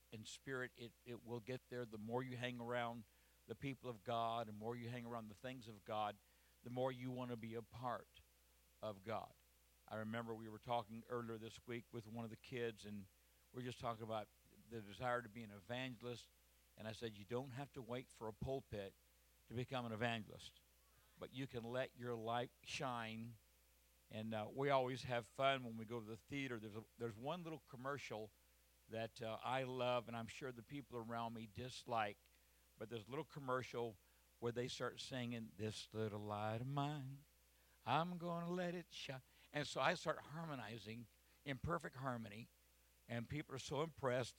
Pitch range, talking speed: 110-125 Hz, 195 wpm